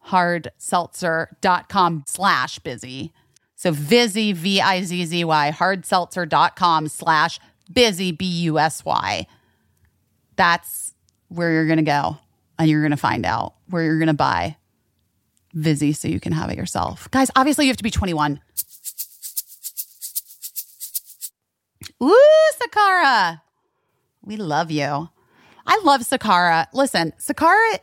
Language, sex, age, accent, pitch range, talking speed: English, female, 30-49, American, 165-220 Hz, 125 wpm